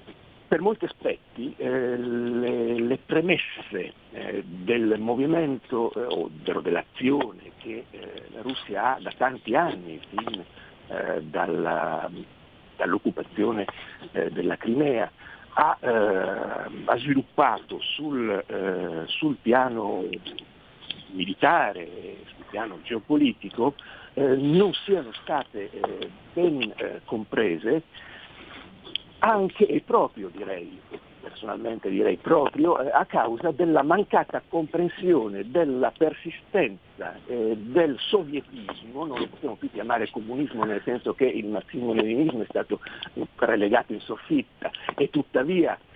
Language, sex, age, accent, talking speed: Italian, male, 60-79, native, 105 wpm